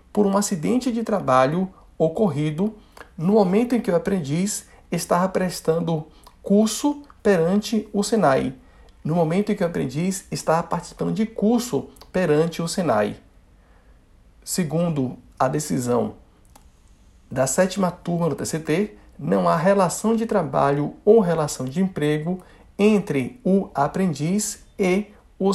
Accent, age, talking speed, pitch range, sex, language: Brazilian, 60-79, 125 wpm, 150-205 Hz, male, Portuguese